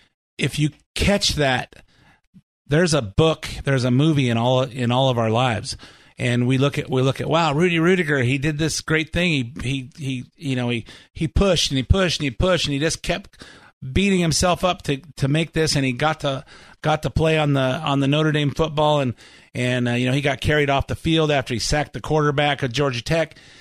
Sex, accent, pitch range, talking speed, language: male, American, 120-155 Hz, 230 wpm, English